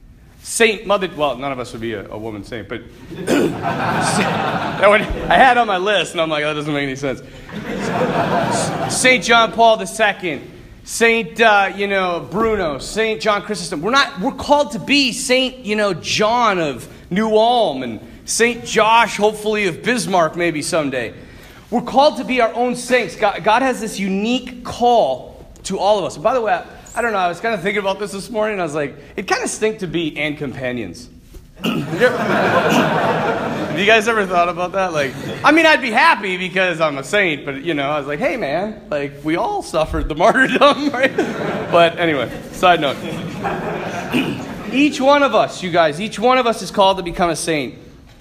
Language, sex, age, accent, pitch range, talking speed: English, male, 40-59, American, 175-240 Hz, 190 wpm